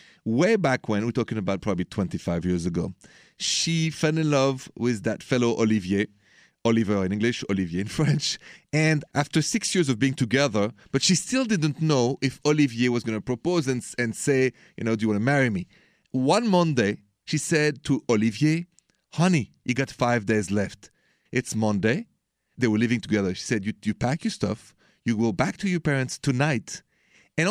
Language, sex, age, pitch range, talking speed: English, male, 40-59, 115-170 Hz, 190 wpm